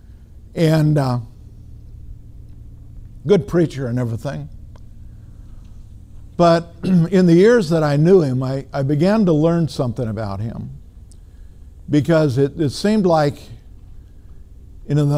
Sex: male